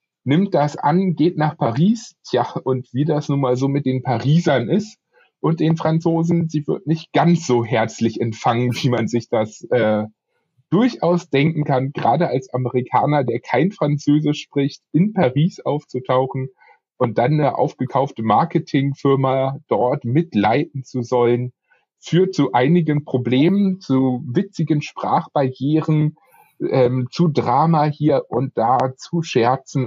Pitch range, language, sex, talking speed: 130-160 Hz, German, male, 135 wpm